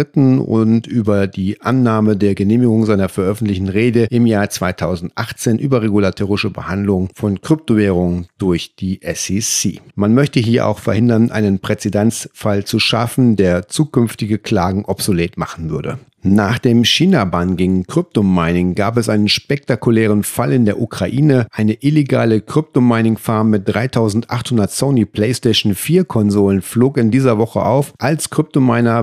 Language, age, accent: German, 40-59, German